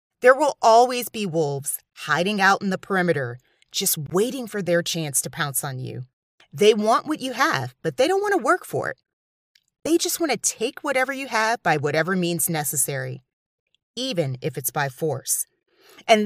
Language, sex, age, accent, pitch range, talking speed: English, female, 30-49, American, 160-255 Hz, 185 wpm